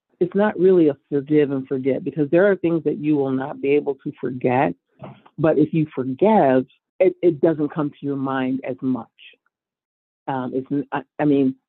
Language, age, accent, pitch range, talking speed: English, 50-69, American, 130-150 Hz, 190 wpm